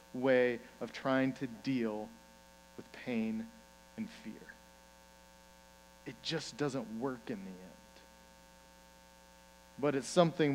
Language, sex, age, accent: English, male, 40-59, American